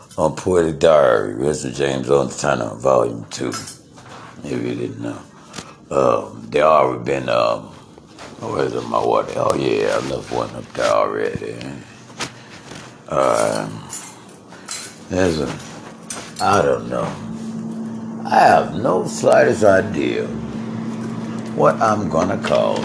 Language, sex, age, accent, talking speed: English, male, 60-79, American, 120 wpm